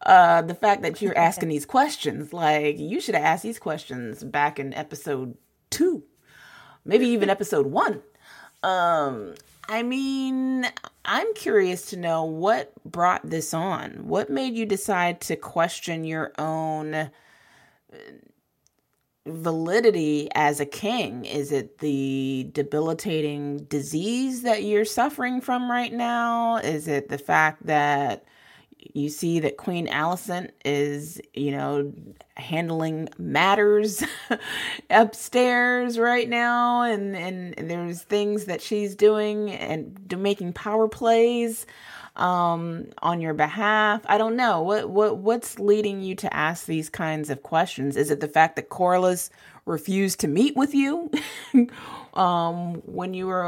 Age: 20-39